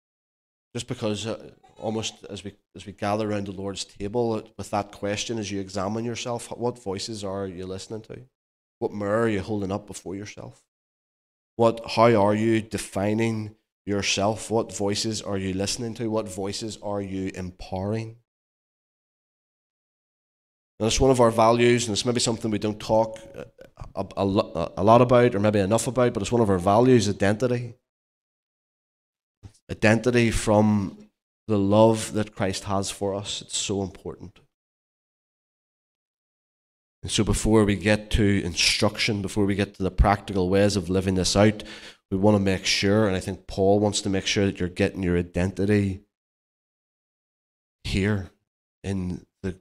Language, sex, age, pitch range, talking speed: English, male, 20-39, 95-110 Hz, 160 wpm